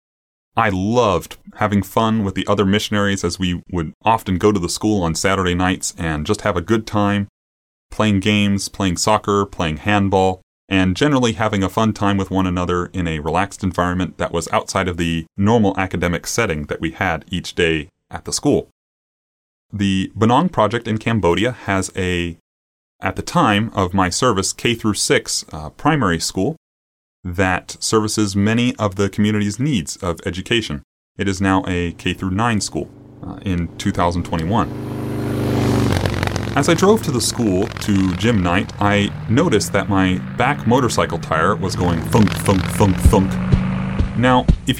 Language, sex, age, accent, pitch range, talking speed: English, male, 30-49, American, 90-110 Hz, 160 wpm